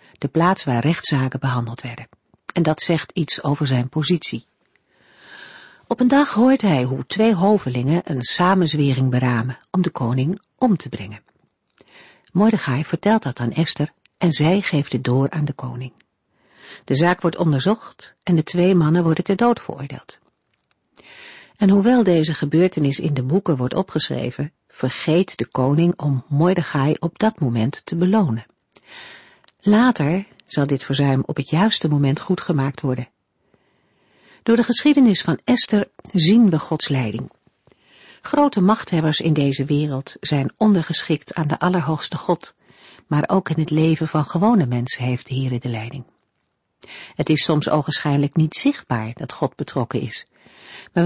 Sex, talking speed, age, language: female, 150 wpm, 50-69, Dutch